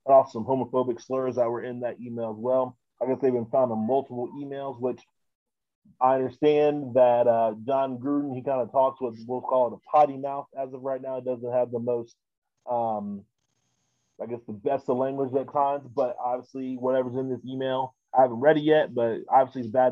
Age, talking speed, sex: 30-49, 210 wpm, male